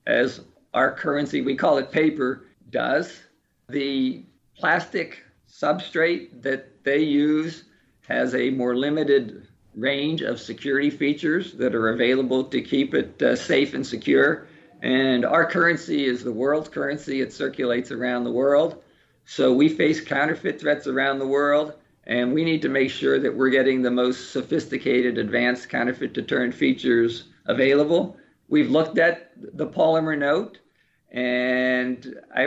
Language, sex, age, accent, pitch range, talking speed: English, male, 50-69, American, 125-150 Hz, 140 wpm